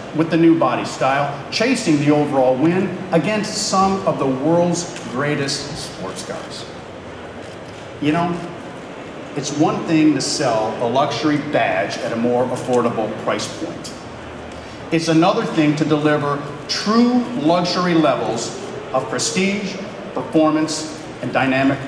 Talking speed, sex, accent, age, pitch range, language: 125 wpm, male, American, 40-59, 140-185 Hz, English